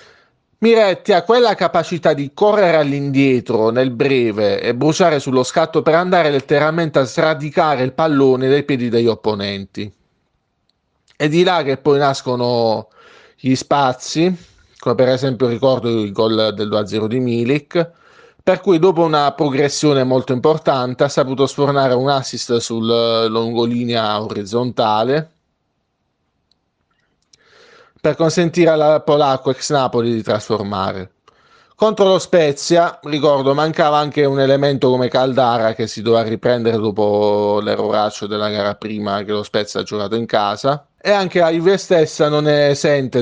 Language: Italian